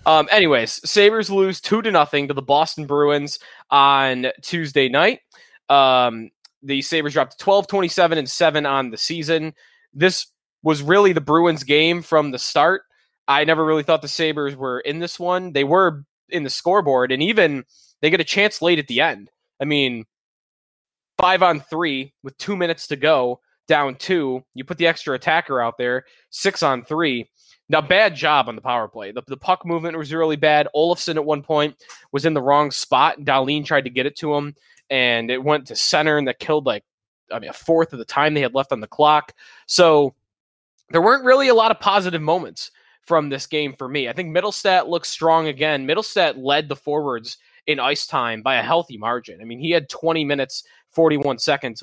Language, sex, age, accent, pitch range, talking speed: English, male, 20-39, American, 135-170 Hz, 190 wpm